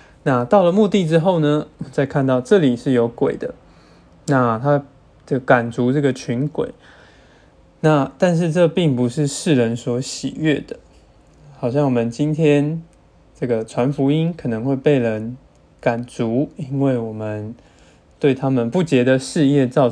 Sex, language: male, Chinese